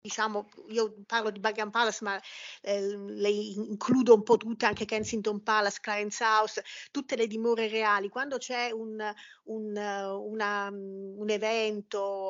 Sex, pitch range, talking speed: female, 205-245 Hz, 140 wpm